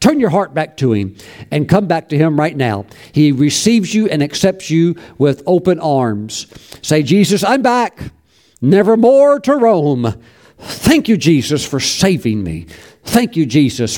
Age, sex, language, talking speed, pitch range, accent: 50-69, male, English, 165 wpm, 125-165 Hz, American